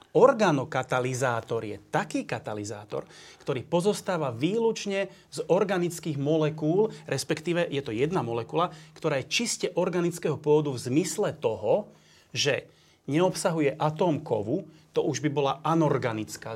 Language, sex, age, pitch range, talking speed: Slovak, male, 30-49, 135-175 Hz, 120 wpm